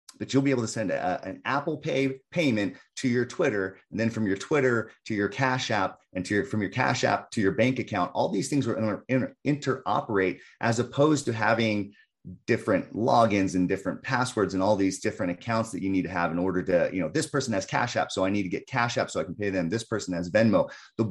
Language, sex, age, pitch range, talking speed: English, male, 30-49, 95-130 Hz, 245 wpm